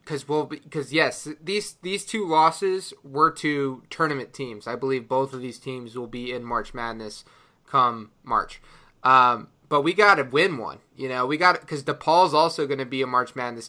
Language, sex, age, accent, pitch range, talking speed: English, male, 20-39, American, 130-150 Hz, 195 wpm